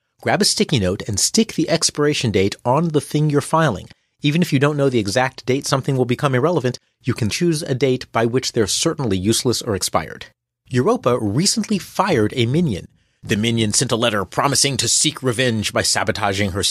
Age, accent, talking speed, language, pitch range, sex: 40-59, American, 200 wpm, English, 105-150 Hz, male